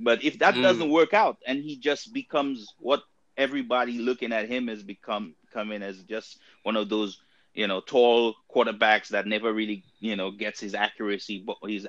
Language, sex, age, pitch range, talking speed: English, male, 30-49, 110-145 Hz, 180 wpm